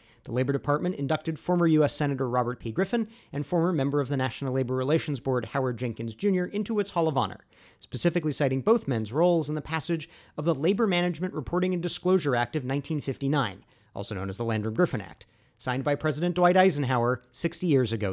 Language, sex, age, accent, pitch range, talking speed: English, male, 40-59, American, 120-165 Hz, 195 wpm